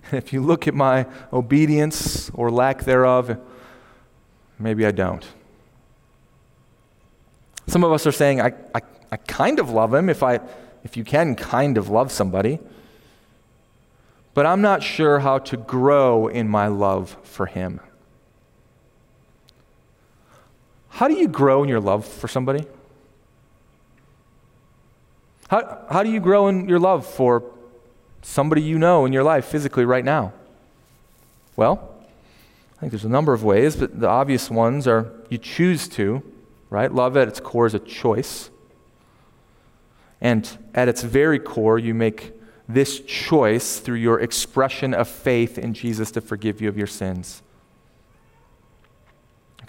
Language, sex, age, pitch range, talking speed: English, male, 30-49, 110-135 Hz, 145 wpm